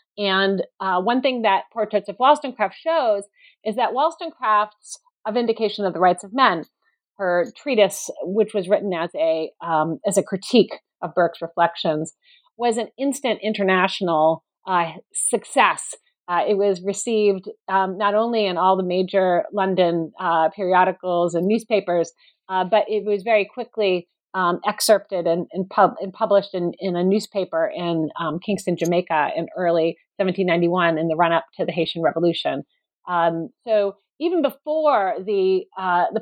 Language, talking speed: English, 155 wpm